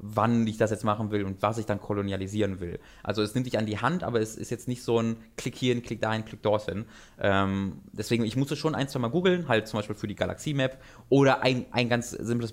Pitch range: 110-145 Hz